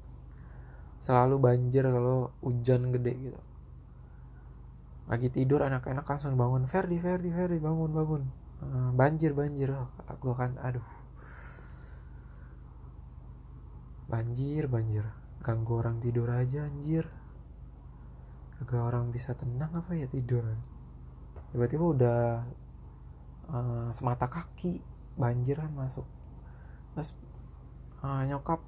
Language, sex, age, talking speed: Indonesian, male, 20-39, 95 wpm